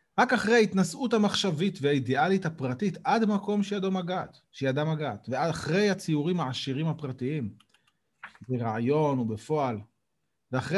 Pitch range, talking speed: 125-180 Hz, 95 wpm